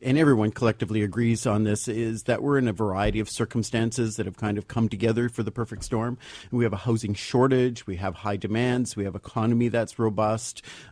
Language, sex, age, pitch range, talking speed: English, male, 50-69, 105-120 Hz, 210 wpm